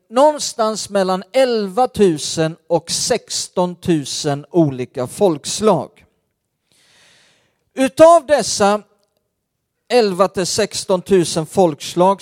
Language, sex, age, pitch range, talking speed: Swedish, male, 50-69, 155-215 Hz, 75 wpm